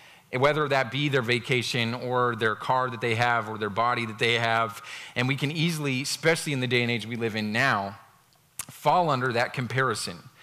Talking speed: 200 wpm